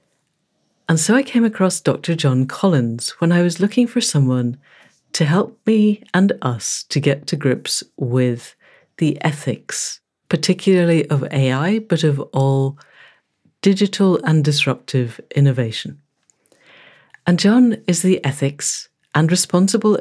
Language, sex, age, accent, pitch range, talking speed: English, female, 60-79, British, 130-175 Hz, 130 wpm